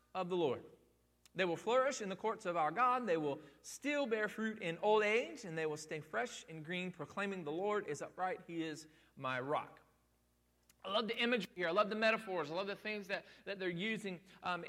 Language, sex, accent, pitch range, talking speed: English, male, American, 155-195 Hz, 215 wpm